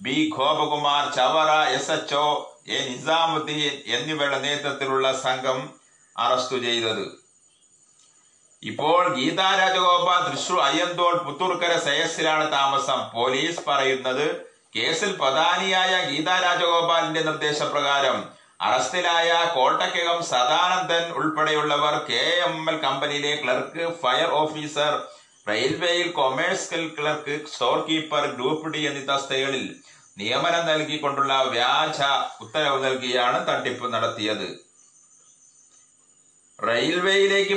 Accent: native